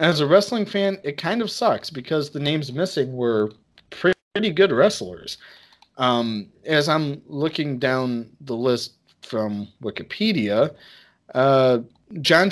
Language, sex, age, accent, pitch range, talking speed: English, male, 30-49, American, 110-145 Hz, 130 wpm